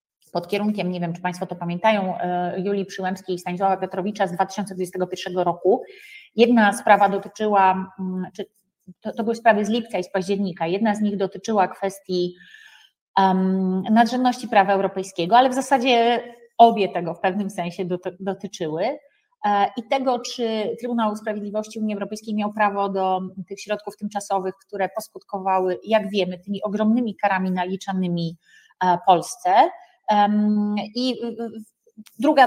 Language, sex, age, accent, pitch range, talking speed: Polish, female, 30-49, native, 185-225 Hz, 130 wpm